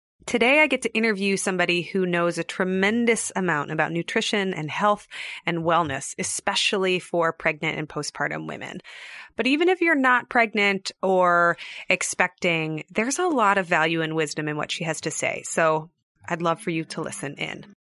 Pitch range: 165-210 Hz